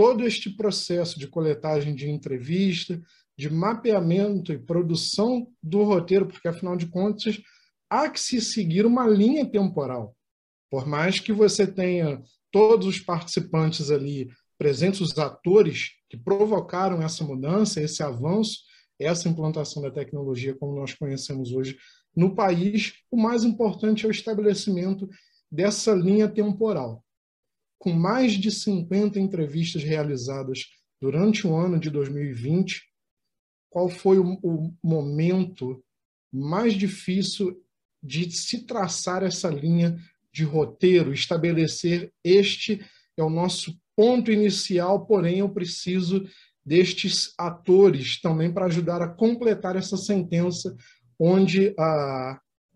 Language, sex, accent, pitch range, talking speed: Portuguese, male, Brazilian, 155-200 Hz, 120 wpm